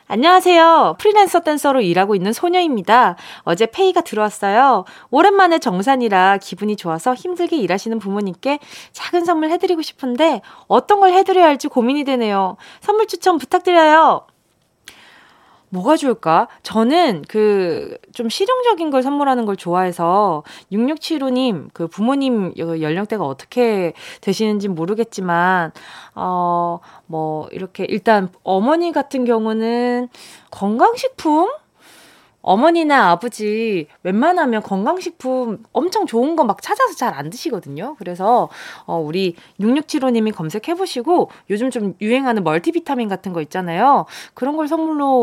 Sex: female